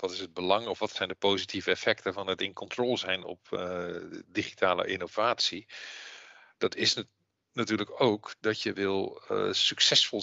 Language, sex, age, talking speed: Dutch, male, 50-69, 165 wpm